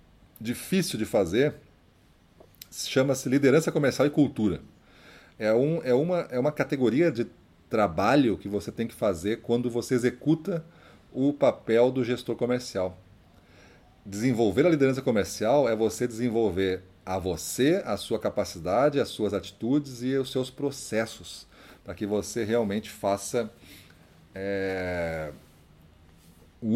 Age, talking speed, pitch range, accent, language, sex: 40-59, 115 wpm, 95-125 Hz, Brazilian, Portuguese, male